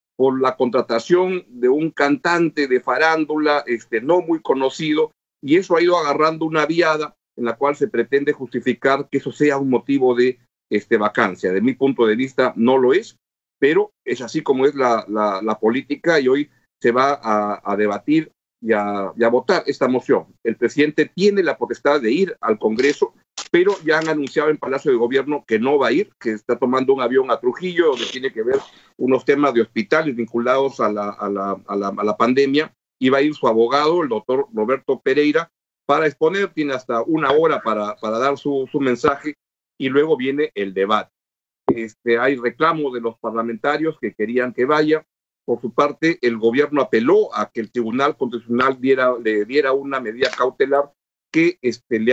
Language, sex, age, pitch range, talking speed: Spanish, male, 50-69, 115-155 Hz, 195 wpm